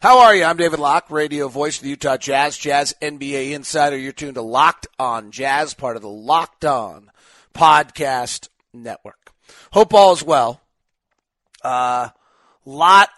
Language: English